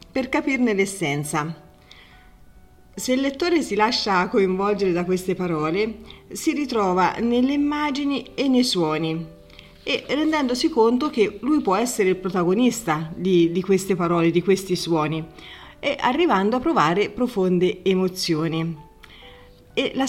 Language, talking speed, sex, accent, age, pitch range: Italian, 130 wpm, female, native, 40-59, 175-240 Hz